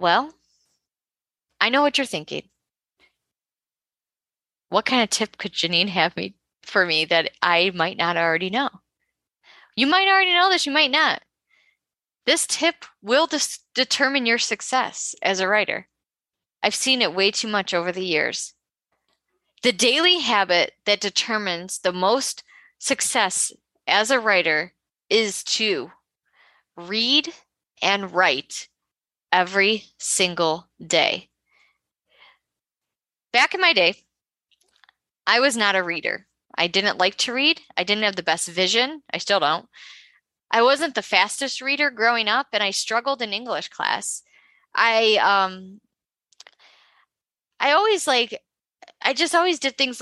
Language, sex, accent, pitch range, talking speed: English, female, American, 190-275 Hz, 135 wpm